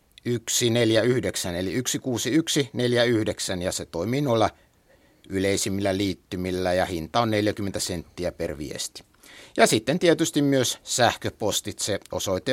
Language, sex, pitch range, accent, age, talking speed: Finnish, male, 105-130 Hz, native, 60-79, 105 wpm